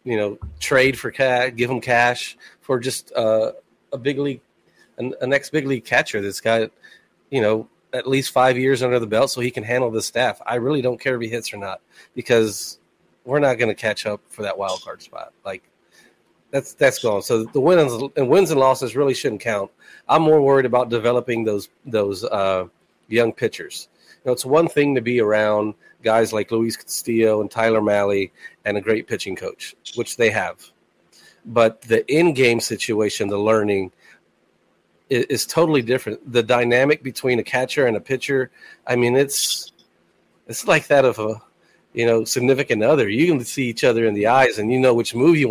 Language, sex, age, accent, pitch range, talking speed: English, male, 30-49, American, 110-135 Hz, 195 wpm